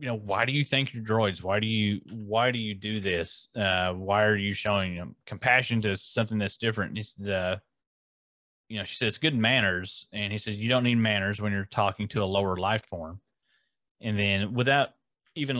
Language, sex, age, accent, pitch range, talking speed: English, male, 30-49, American, 95-115 Hz, 220 wpm